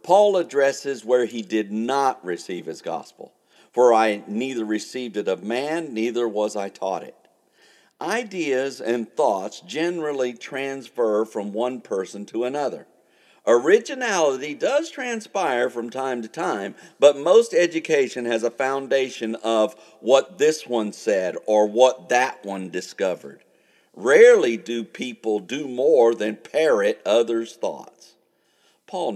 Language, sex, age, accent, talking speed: English, male, 50-69, American, 130 wpm